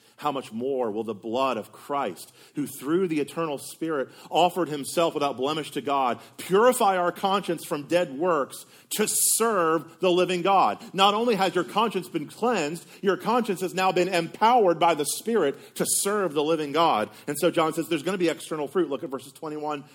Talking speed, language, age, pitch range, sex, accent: 195 wpm, English, 40-59, 145-195 Hz, male, American